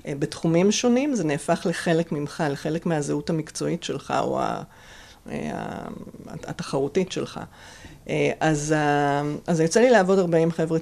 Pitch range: 155-190 Hz